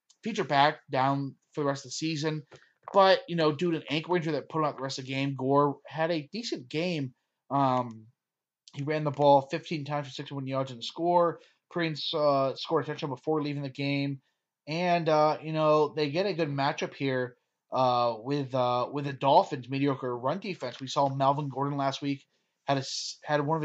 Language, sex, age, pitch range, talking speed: English, male, 30-49, 135-160 Hz, 210 wpm